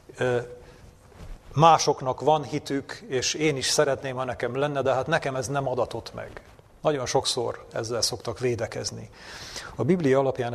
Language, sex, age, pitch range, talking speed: Hungarian, male, 40-59, 120-145 Hz, 140 wpm